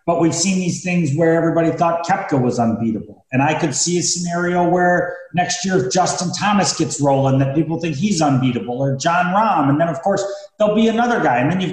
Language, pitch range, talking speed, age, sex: English, 150-185 Hz, 225 wpm, 30-49, male